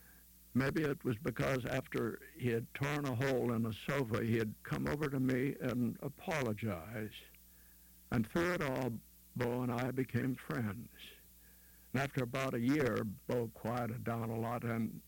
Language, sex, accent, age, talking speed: English, male, American, 60-79, 165 wpm